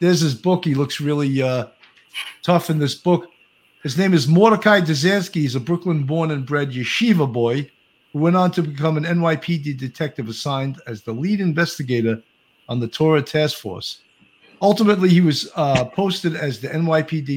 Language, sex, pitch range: English, male, 125-165 Hz